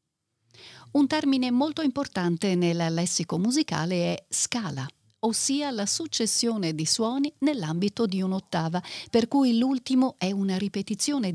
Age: 50-69